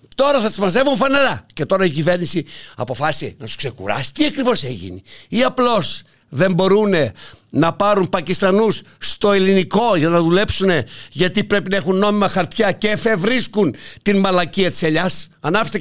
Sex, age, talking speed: male, 60-79, 155 wpm